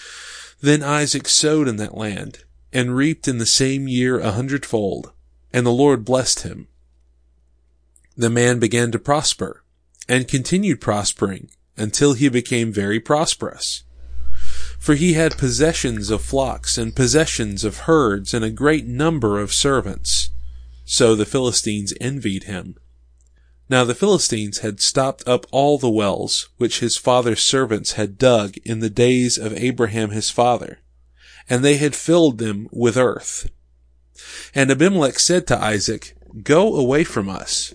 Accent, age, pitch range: American, 30-49, 95-130 Hz